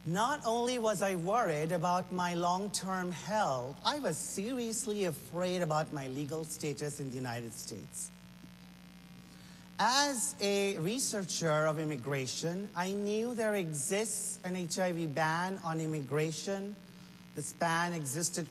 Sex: male